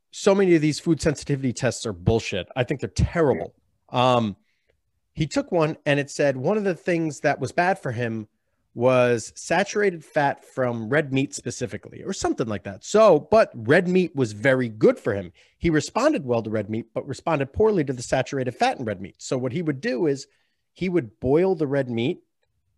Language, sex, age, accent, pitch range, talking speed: English, male, 30-49, American, 120-160 Hz, 205 wpm